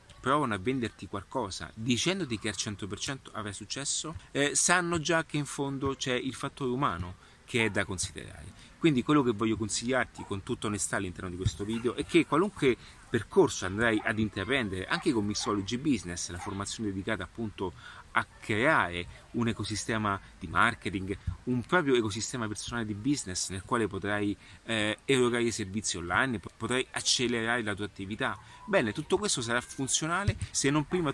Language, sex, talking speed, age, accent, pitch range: Italian, male, 160 wpm, 30-49, native, 100-130 Hz